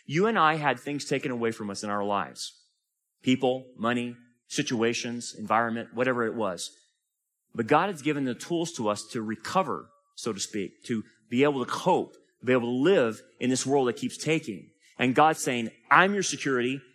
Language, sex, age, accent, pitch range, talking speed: English, male, 30-49, American, 135-205 Hz, 190 wpm